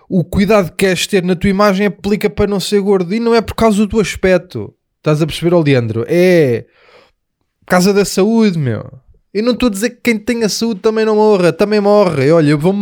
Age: 20-39